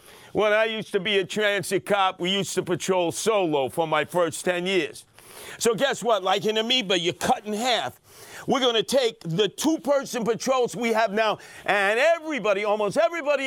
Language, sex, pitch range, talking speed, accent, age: English, male, 185-255 Hz, 185 wpm, American, 50-69